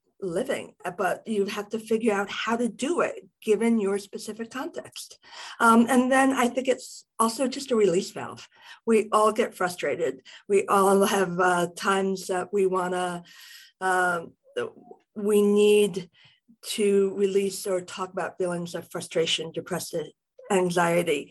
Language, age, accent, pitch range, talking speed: English, 50-69, American, 180-225 Hz, 145 wpm